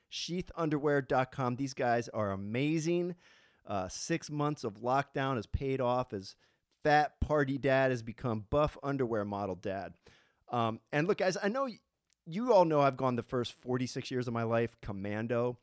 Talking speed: 160 wpm